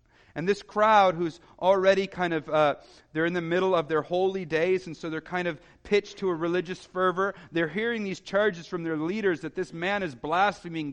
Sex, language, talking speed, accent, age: male, English, 210 wpm, American, 40-59